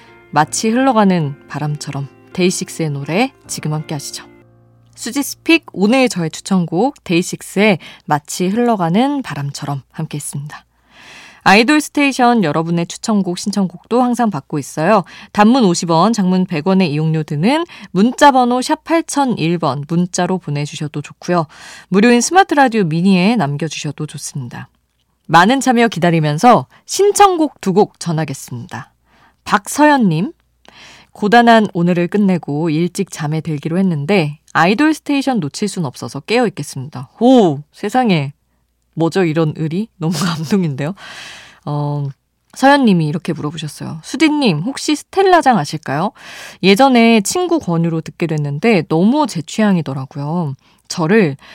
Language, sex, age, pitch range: Korean, female, 20-39, 150-235 Hz